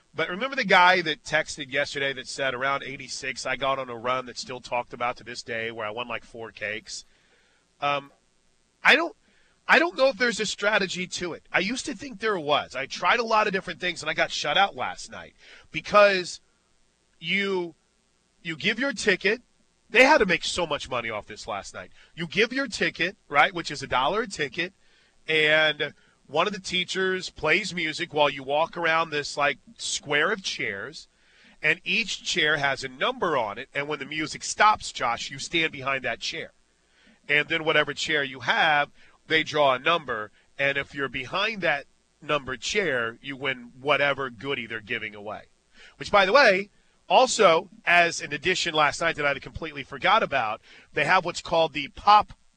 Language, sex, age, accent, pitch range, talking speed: English, male, 30-49, American, 135-185 Hz, 195 wpm